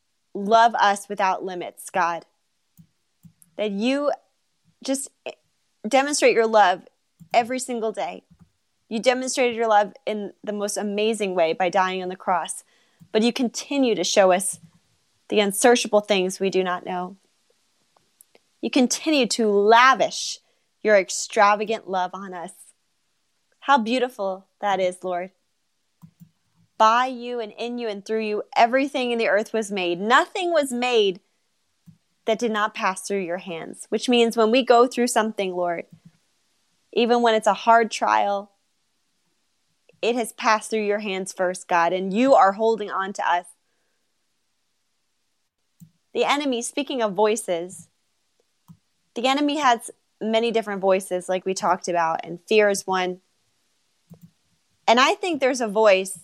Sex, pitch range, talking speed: female, 185-235 Hz, 140 wpm